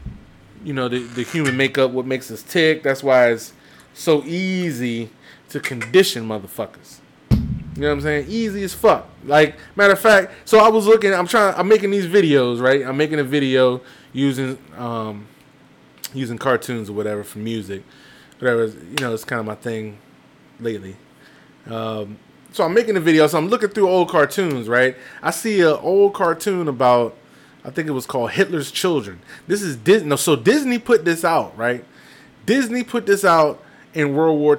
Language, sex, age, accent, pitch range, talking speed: English, male, 20-39, American, 125-180 Hz, 180 wpm